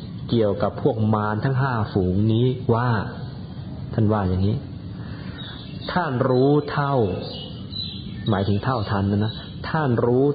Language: Thai